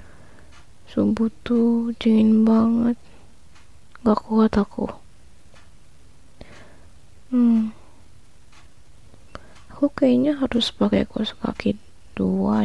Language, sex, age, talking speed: Indonesian, female, 20-39, 70 wpm